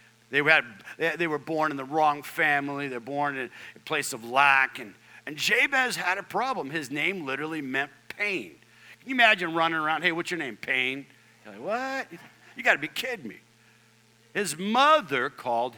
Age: 50-69